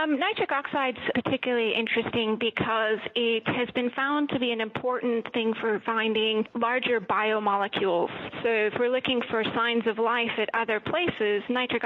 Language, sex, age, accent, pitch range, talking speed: English, female, 30-49, American, 210-245 Hz, 160 wpm